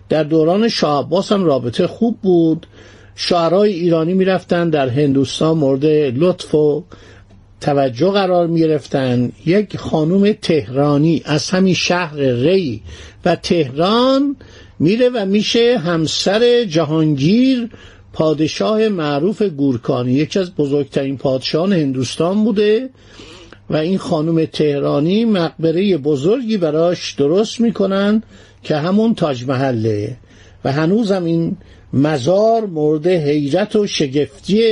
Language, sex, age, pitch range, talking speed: Persian, male, 50-69, 140-195 Hz, 105 wpm